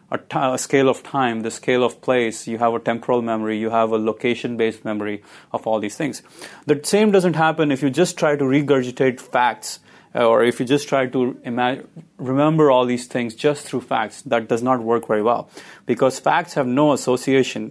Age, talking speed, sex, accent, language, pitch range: 30-49, 195 wpm, male, Indian, English, 115-140 Hz